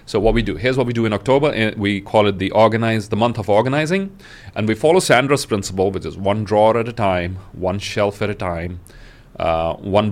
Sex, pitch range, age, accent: male, 95-115 Hz, 30-49, Indian